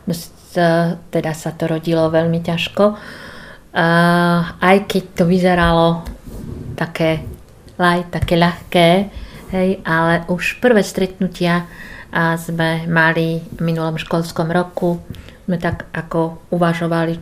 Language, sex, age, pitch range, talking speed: Slovak, female, 50-69, 160-175 Hz, 100 wpm